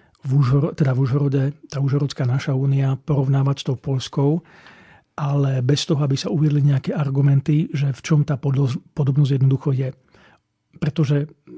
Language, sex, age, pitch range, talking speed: Slovak, male, 40-59, 140-160 Hz, 140 wpm